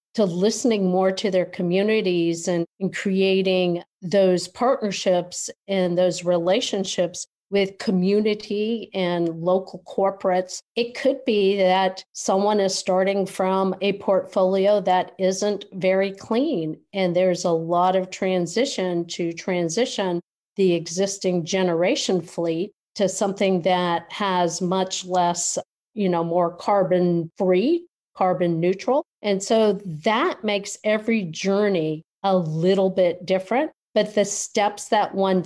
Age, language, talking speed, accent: 50-69, English, 120 wpm, American